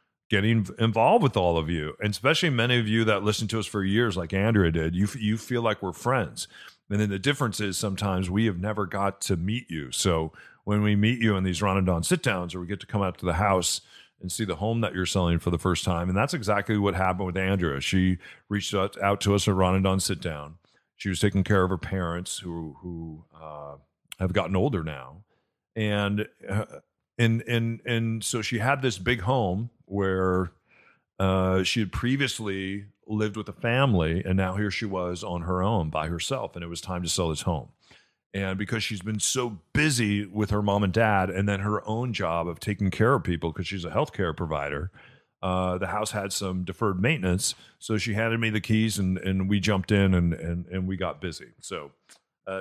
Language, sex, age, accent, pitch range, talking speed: English, male, 40-59, American, 90-110 Hz, 220 wpm